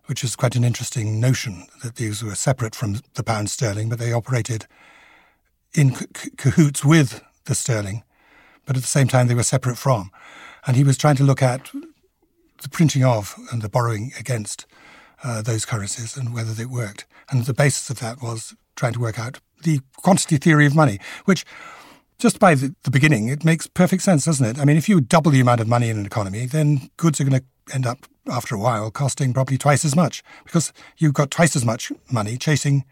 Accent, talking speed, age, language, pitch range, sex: British, 210 wpm, 60-79, English, 115-150 Hz, male